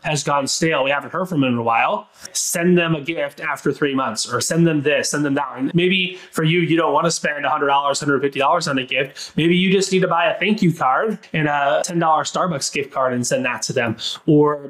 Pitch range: 145-175 Hz